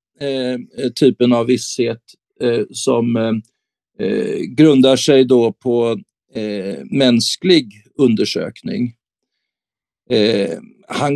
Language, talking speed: Swedish, 85 wpm